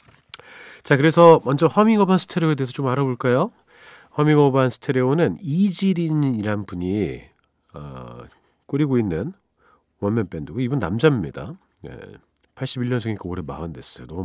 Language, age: Korean, 40-59